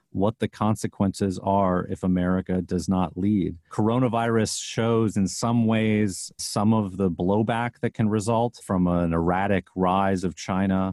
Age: 40-59